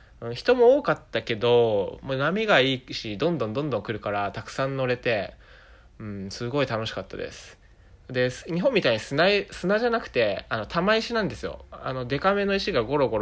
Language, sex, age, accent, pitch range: Japanese, male, 20-39, native, 105-140 Hz